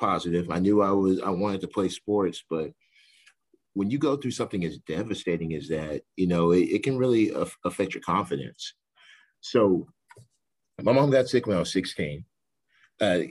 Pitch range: 85-100 Hz